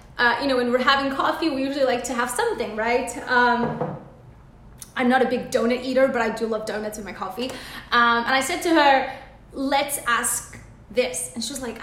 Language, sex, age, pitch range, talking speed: English, female, 20-39, 245-335 Hz, 215 wpm